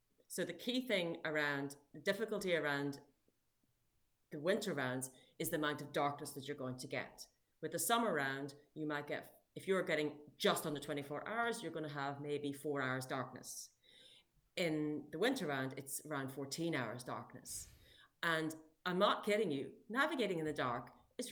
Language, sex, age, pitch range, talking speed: English, female, 30-49, 140-175 Hz, 175 wpm